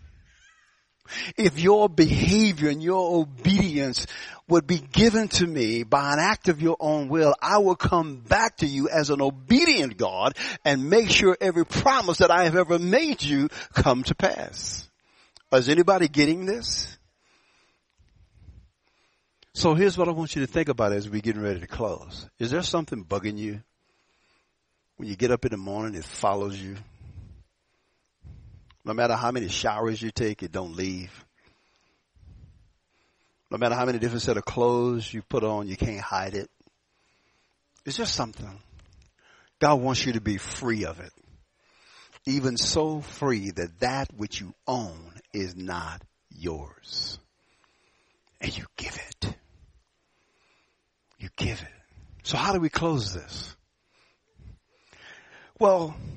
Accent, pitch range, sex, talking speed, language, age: American, 100-165 Hz, male, 145 wpm, English, 60-79